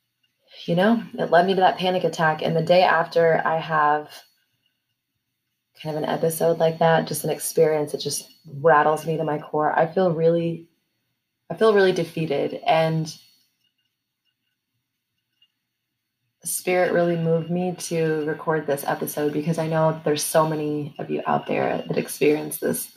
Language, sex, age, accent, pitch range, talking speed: English, female, 20-39, American, 150-165 Hz, 155 wpm